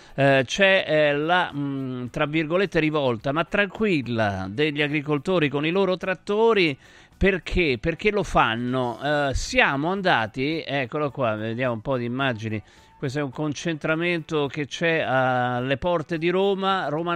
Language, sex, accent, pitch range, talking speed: Italian, male, native, 135-175 Hz, 135 wpm